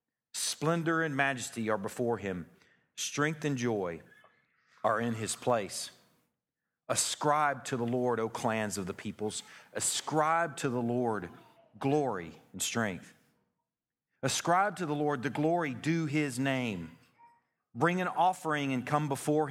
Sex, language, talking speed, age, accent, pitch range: male, English, 135 wpm, 50-69, American, 120-155 Hz